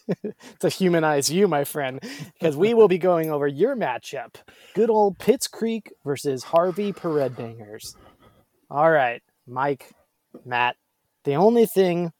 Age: 20-39